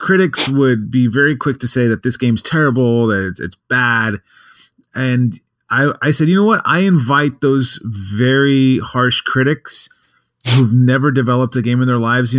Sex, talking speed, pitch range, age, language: male, 180 wpm, 120-145 Hz, 30-49, English